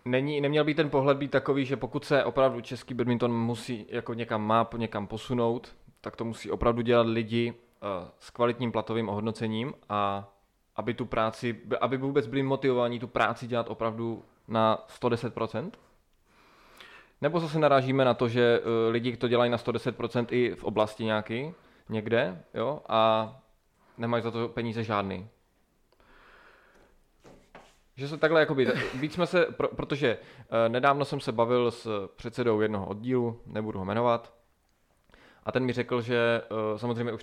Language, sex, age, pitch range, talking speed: Czech, male, 20-39, 110-125 Hz, 145 wpm